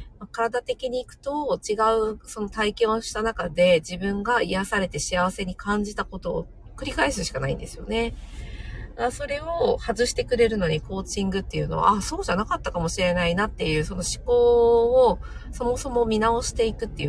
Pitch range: 155-230 Hz